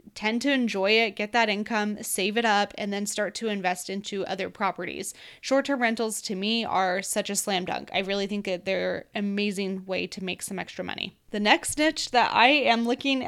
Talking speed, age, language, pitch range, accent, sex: 215 wpm, 20-39, English, 190-235 Hz, American, female